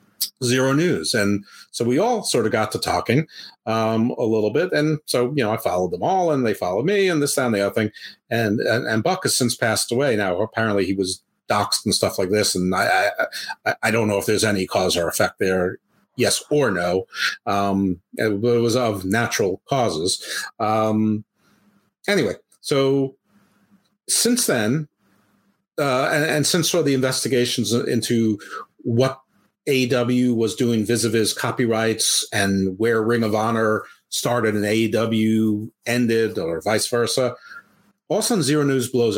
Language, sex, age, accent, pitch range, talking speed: English, male, 50-69, American, 110-135 Hz, 170 wpm